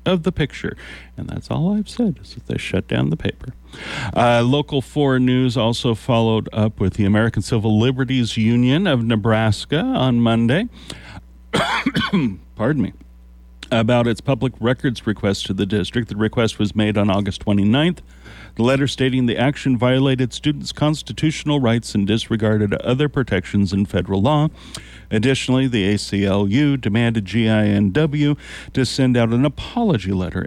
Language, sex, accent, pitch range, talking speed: English, male, American, 100-130 Hz, 150 wpm